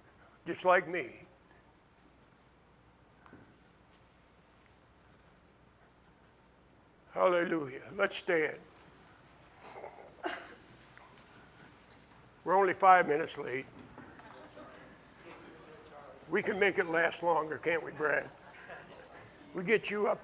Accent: American